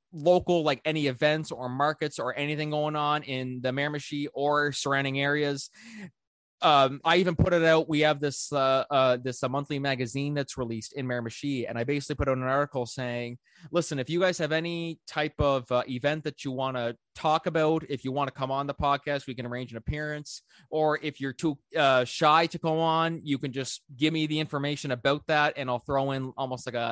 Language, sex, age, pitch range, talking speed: English, male, 20-39, 135-160 Hz, 215 wpm